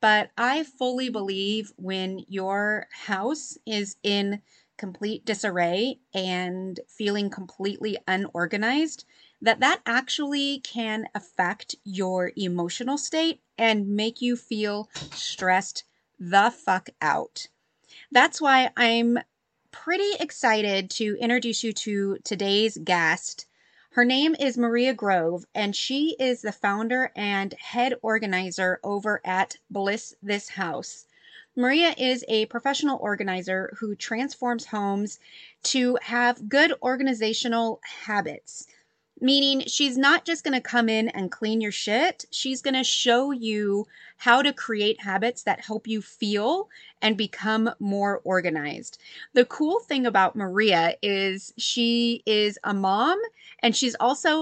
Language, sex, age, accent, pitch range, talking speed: English, female, 30-49, American, 200-255 Hz, 125 wpm